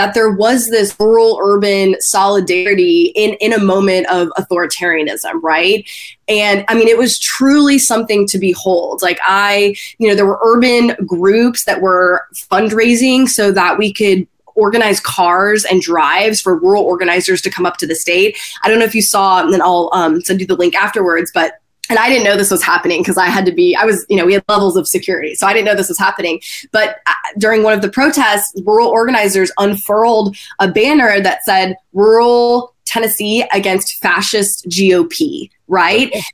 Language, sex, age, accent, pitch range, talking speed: English, female, 20-39, American, 185-230 Hz, 190 wpm